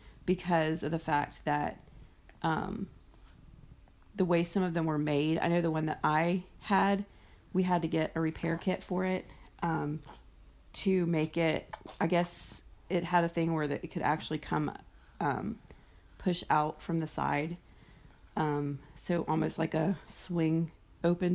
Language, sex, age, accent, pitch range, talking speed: English, female, 30-49, American, 155-180 Hz, 160 wpm